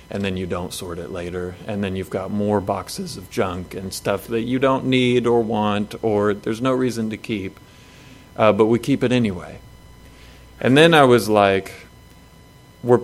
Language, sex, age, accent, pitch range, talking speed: English, male, 30-49, American, 100-120 Hz, 190 wpm